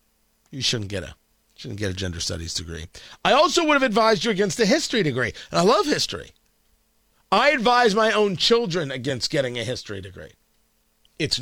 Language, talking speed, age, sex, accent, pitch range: English, 185 wpm, 50-69, male, American, 135-200 Hz